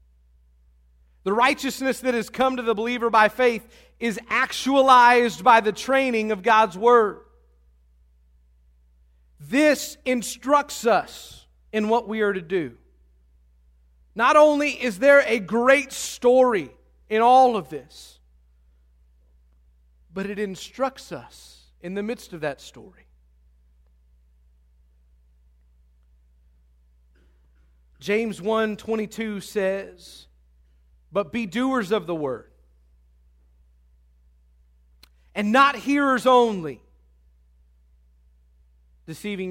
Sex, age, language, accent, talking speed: male, 40-59, English, American, 95 wpm